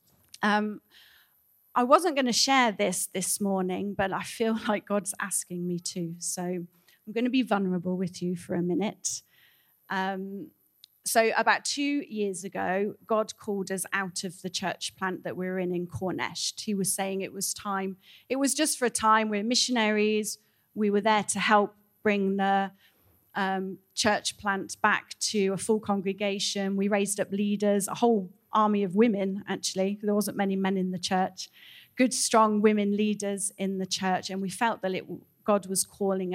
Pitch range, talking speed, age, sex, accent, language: 185-215 Hz, 180 wpm, 30-49, female, British, English